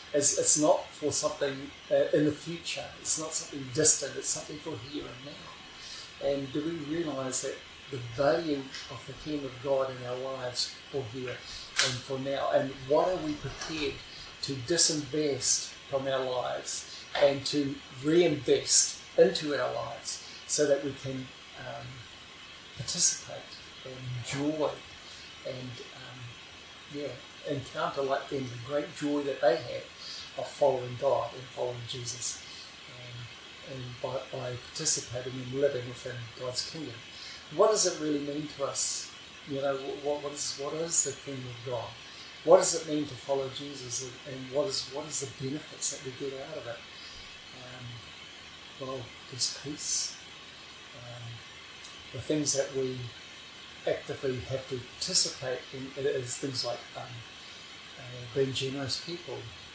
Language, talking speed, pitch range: English, 150 wpm, 125-145 Hz